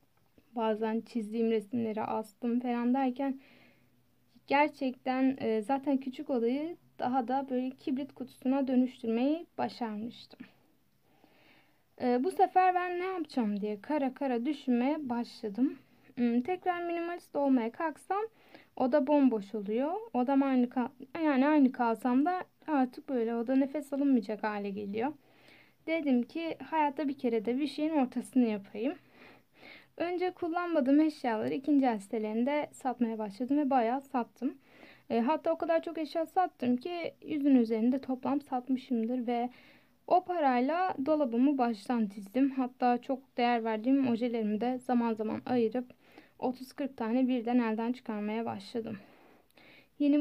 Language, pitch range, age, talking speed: Turkish, 235-295 Hz, 10-29, 120 wpm